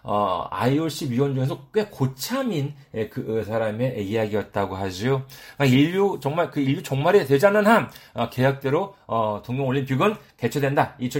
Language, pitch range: Korean, 115-170 Hz